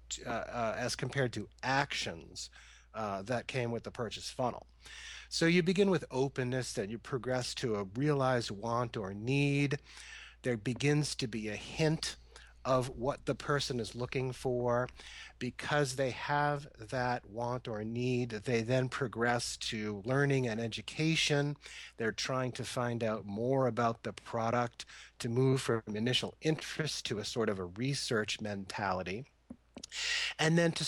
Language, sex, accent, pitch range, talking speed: English, male, American, 110-140 Hz, 150 wpm